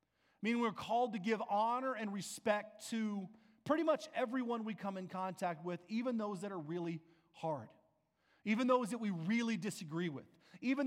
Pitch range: 160-225 Hz